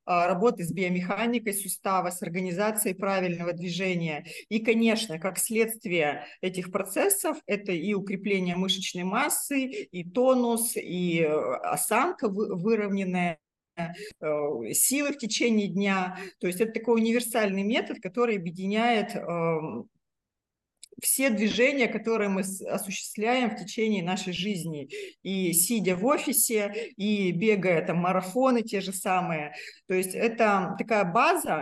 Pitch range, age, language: 185-225 Hz, 40-59, Russian